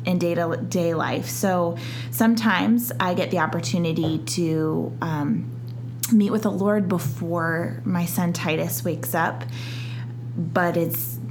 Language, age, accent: English, 20-39, American